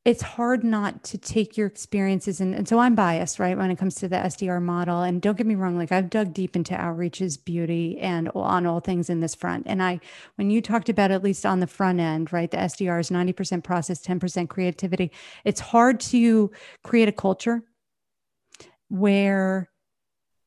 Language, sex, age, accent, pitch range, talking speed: English, female, 40-59, American, 180-210 Hz, 190 wpm